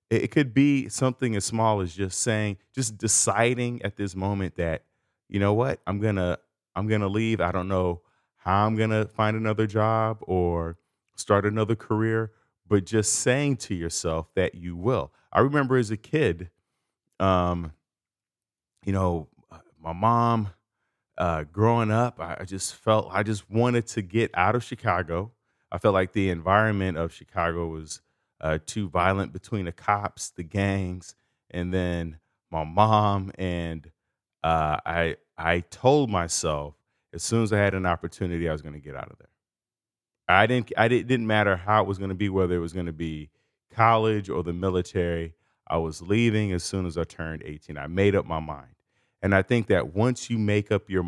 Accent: American